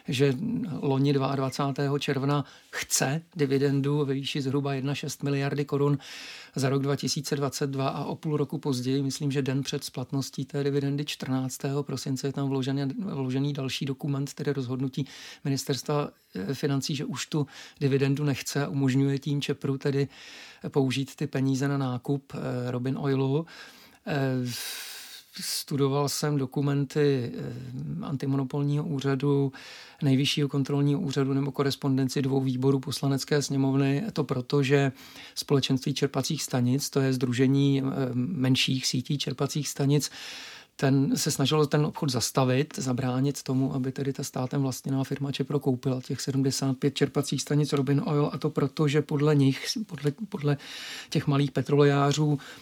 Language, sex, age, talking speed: Czech, male, 50-69, 130 wpm